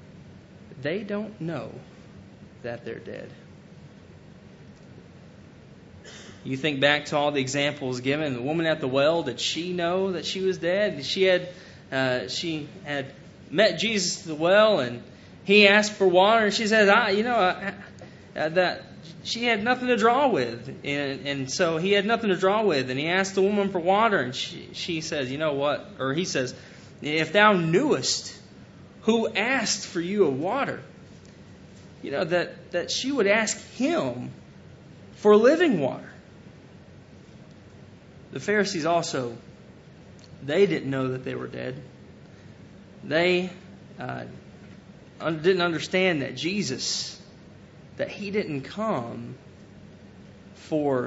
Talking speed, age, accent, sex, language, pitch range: 145 wpm, 20-39, American, male, English, 145-200 Hz